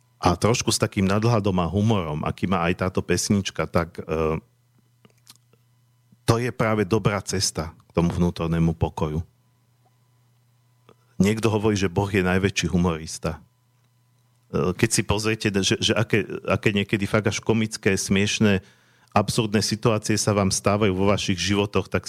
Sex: male